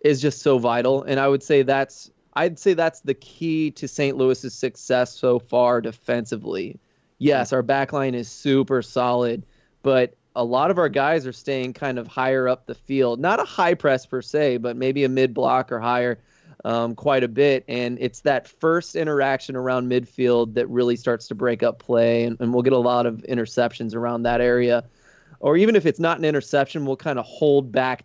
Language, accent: English, American